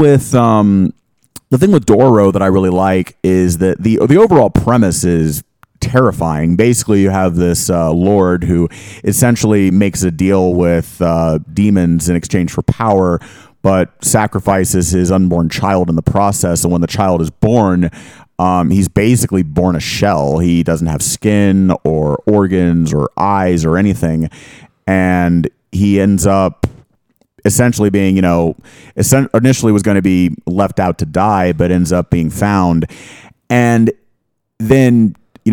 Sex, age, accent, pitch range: male, 30-49, American, 85-105 Hz